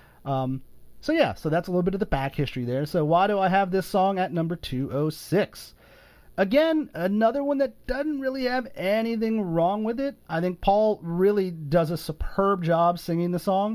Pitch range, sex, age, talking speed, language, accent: 150-195 Hz, male, 30-49, 195 wpm, English, American